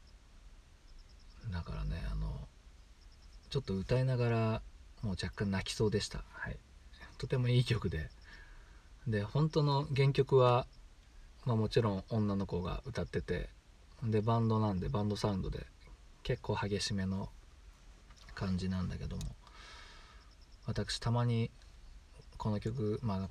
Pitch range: 80-110 Hz